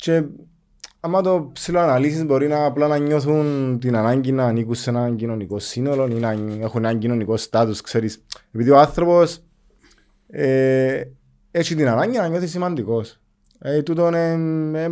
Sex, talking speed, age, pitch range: male, 100 wpm, 20-39, 115-155 Hz